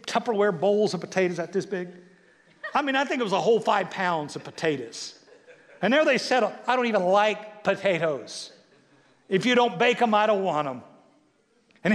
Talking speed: 190 wpm